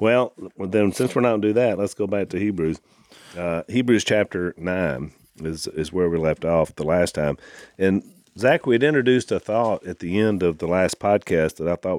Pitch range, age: 85-110 Hz, 40-59